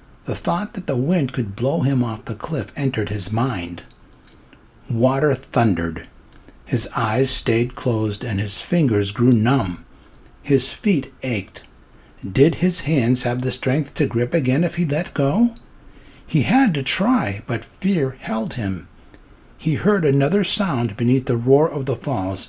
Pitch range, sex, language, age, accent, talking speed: 105-140 Hz, male, English, 60-79, American, 155 wpm